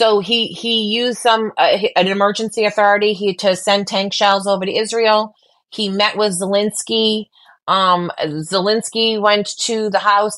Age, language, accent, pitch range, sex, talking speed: 30-49, English, American, 165-200 Hz, female, 155 wpm